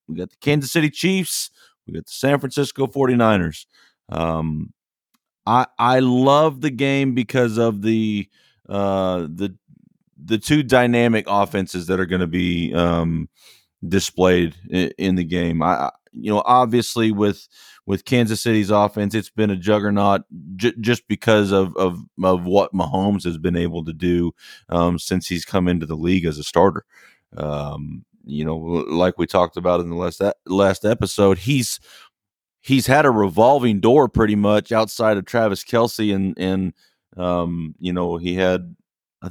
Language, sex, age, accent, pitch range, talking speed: English, male, 30-49, American, 90-110 Hz, 160 wpm